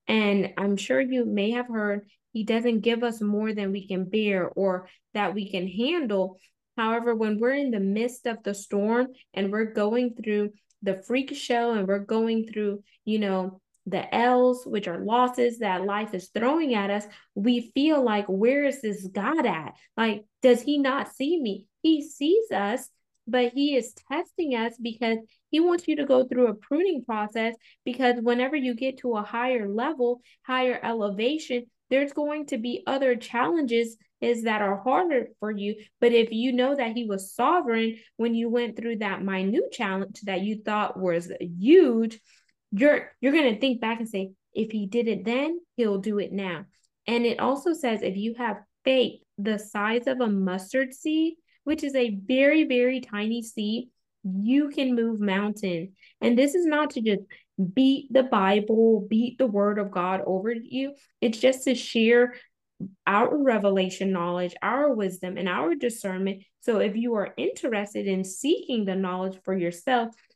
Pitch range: 205-255 Hz